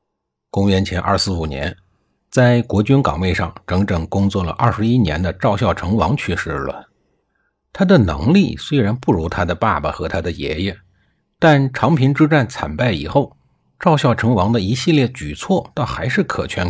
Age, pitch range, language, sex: 50-69, 85-135 Hz, Chinese, male